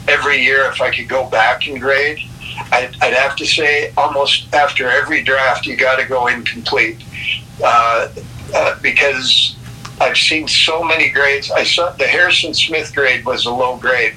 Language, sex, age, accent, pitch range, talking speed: English, male, 60-79, American, 120-145 Hz, 175 wpm